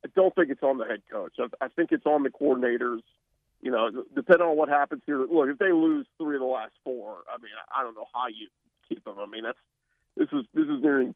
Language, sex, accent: English, male, American